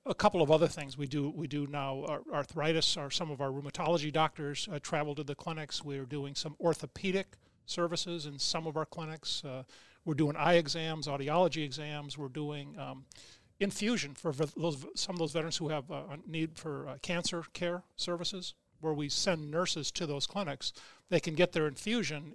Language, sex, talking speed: English, male, 200 wpm